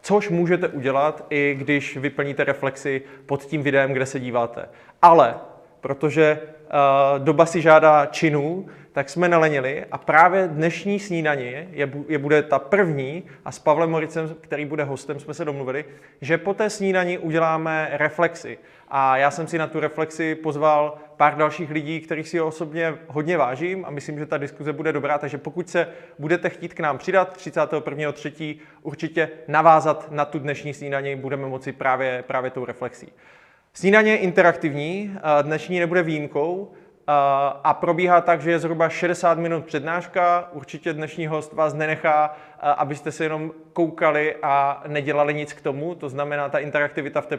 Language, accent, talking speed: Czech, native, 160 wpm